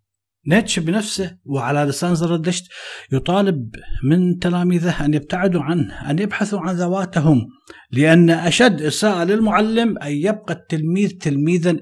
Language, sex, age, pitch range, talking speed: Arabic, male, 50-69, 130-175 Hz, 115 wpm